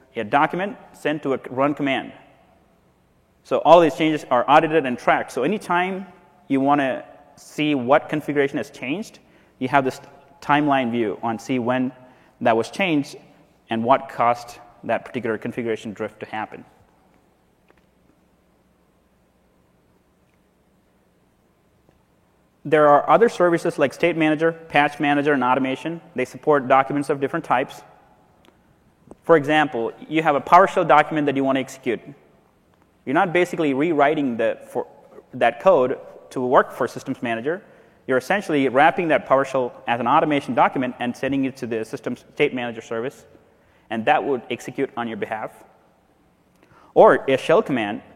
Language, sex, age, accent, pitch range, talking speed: English, male, 30-49, American, 120-150 Hz, 140 wpm